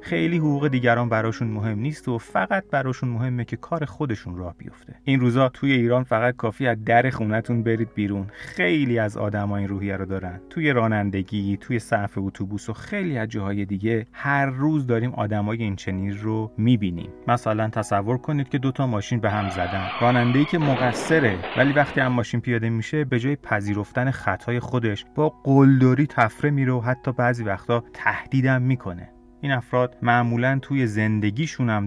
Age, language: 30-49, Persian